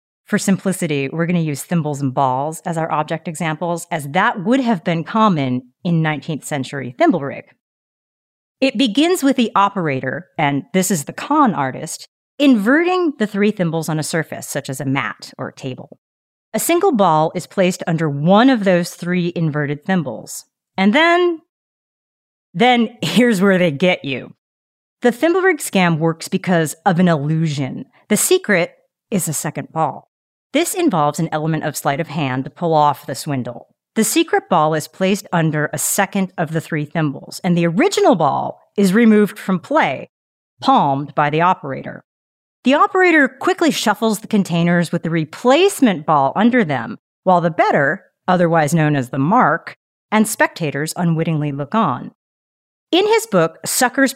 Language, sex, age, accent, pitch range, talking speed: English, female, 40-59, American, 155-220 Hz, 165 wpm